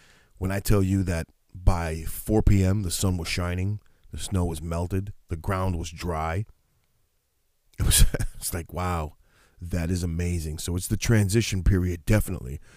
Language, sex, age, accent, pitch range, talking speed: English, male, 40-59, American, 80-100 Hz, 160 wpm